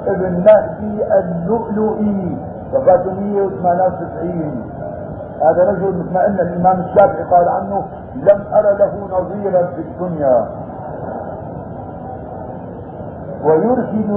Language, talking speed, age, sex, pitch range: Arabic, 90 wpm, 50-69, male, 175-205 Hz